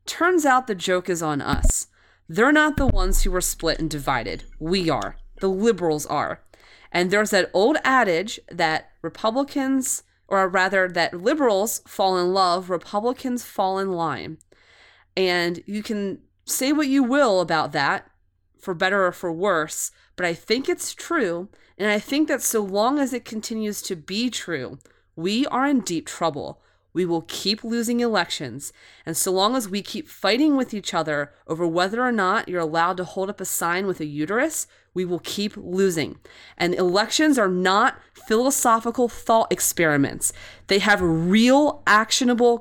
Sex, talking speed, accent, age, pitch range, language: female, 170 wpm, American, 30-49, 170-235 Hz, English